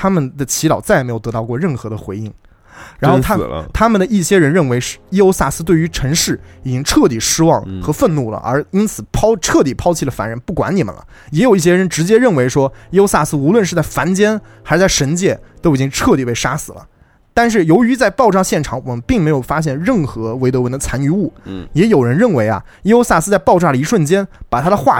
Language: Chinese